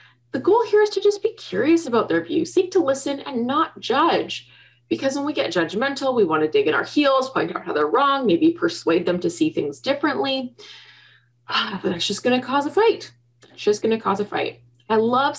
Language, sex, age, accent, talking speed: English, female, 20-39, American, 225 wpm